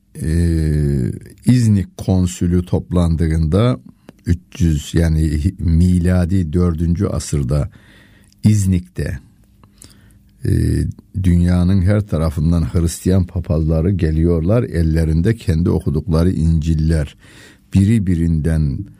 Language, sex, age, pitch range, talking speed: Turkish, male, 60-79, 80-105 Hz, 75 wpm